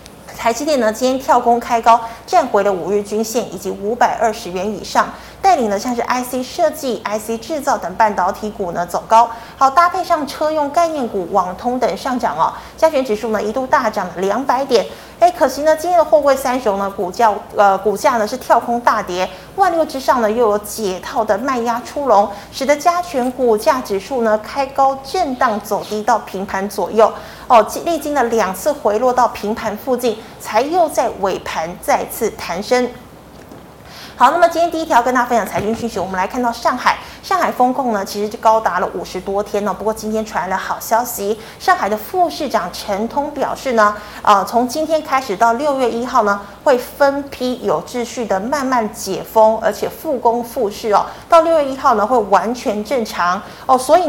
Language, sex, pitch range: Chinese, female, 210-270 Hz